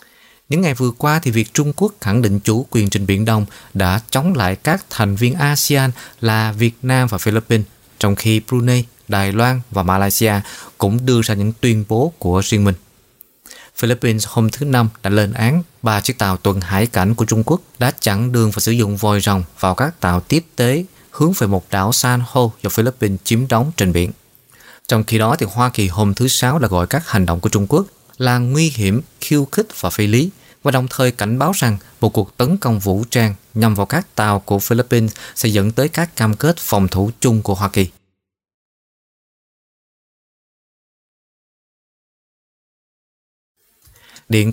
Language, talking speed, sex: Vietnamese, 190 wpm, male